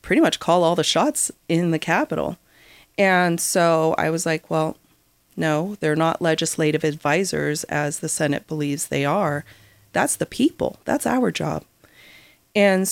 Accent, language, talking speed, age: American, English, 155 wpm, 30-49